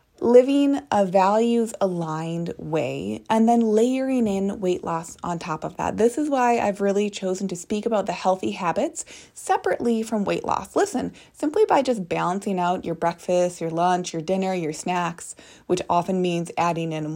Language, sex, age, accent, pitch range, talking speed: English, female, 20-39, American, 170-240 Hz, 175 wpm